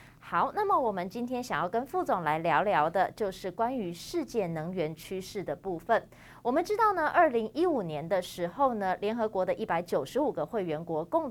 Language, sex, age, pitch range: Chinese, female, 30-49, 175-265 Hz